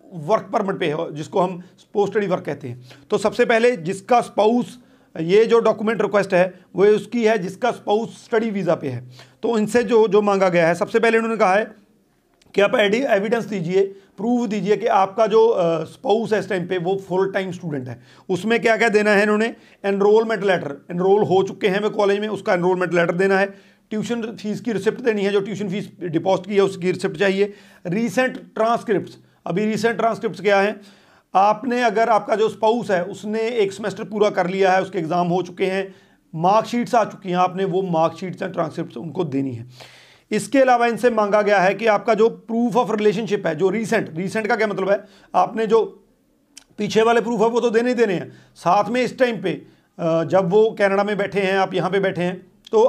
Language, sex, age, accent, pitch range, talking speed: Hindi, male, 40-59, native, 185-225 Hz, 205 wpm